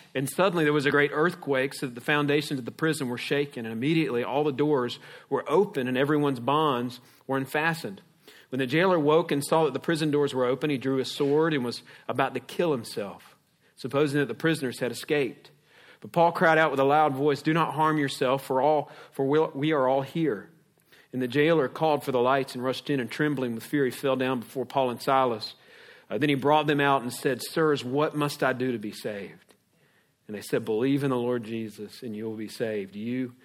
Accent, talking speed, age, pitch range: American, 225 wpm, 40-59, 125-150 Hz